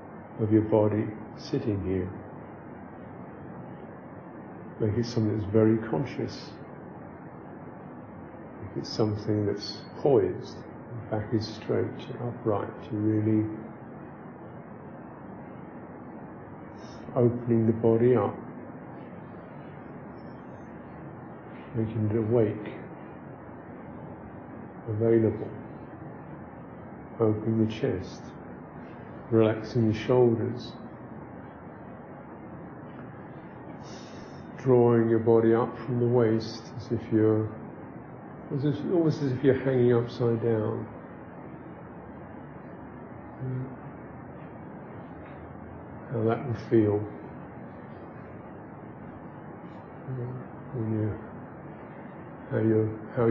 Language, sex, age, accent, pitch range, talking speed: English, male, 50-69, British, 110-120 Hz, 75 wpm